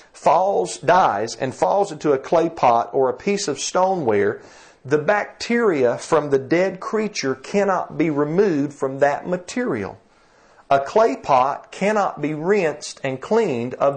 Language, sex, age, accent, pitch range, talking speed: English, male, 50-69, American, 130-190 Hz, 145 wpm